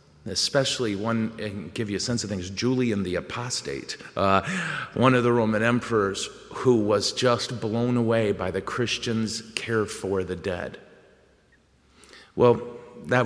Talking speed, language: 145 wpm, English